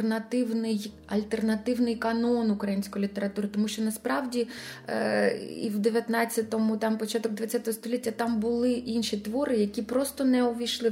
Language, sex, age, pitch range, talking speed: Ukrainian, female, 20-39, 200-230 Hz, 135 wpm